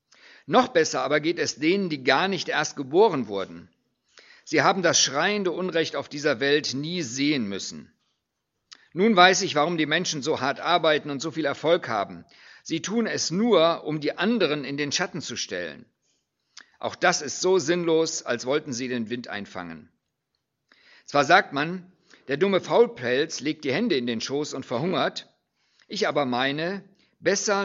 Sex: male